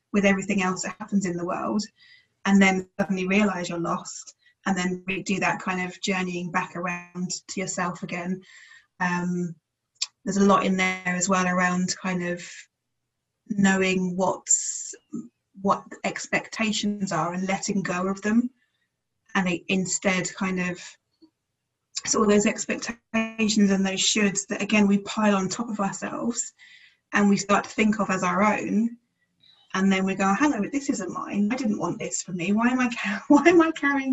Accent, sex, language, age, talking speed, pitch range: British, female, English, 20-39, 170 wpm, 180-210 Hz